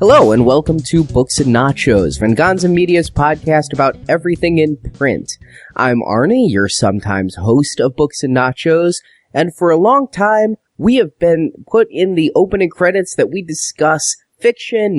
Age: 30-49